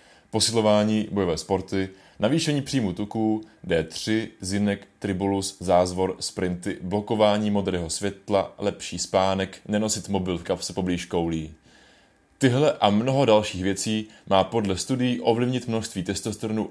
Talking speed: 120 wpm